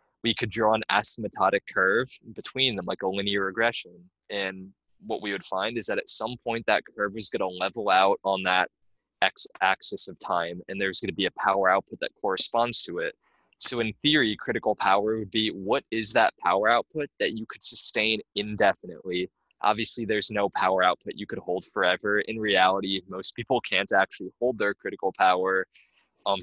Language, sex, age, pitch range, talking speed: French, male, 20-39, 95-115 Hz, 190 wpm